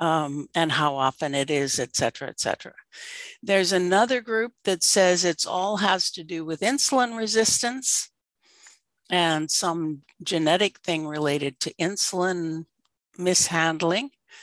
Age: 60-79